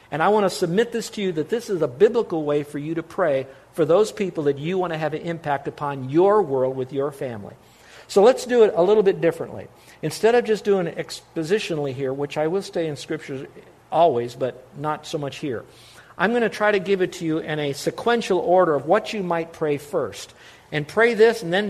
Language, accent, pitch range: English, American, 150-185 Hz